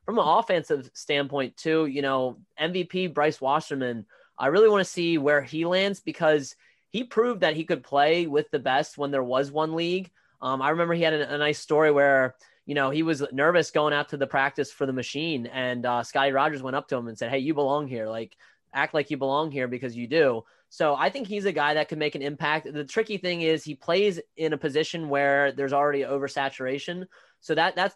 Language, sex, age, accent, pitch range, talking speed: English, male, 20-39, American, 135-160 Hz, 225 wpm